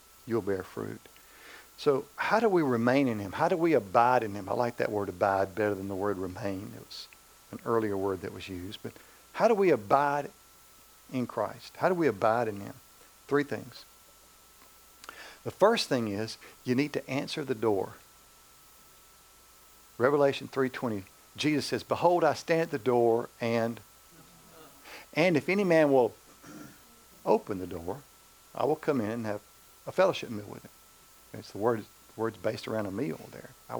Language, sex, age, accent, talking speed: English, male, 50-69, American, 175 wpm